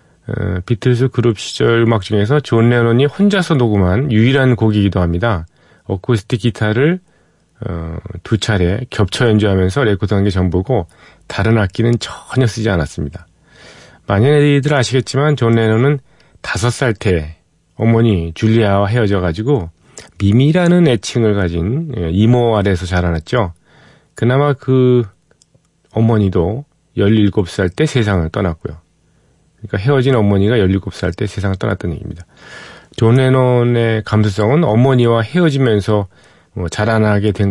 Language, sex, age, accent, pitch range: Korean, male, 40-59, native, 95-125 Hz